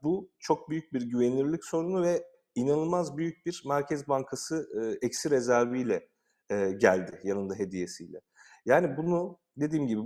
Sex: male